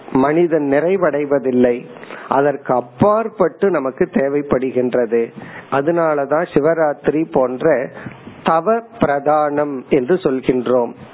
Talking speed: 70 wpm